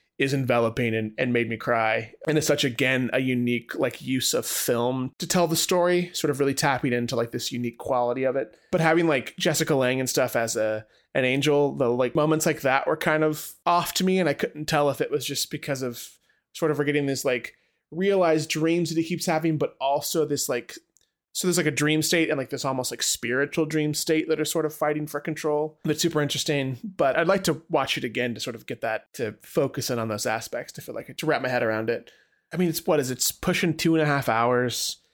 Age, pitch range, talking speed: 20-39, 130-160 Hz, 245 wpm